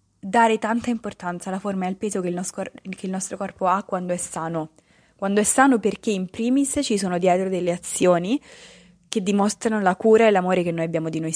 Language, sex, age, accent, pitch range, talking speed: Italian, female, 20-39, native, 180-215 Hz, 215 wpm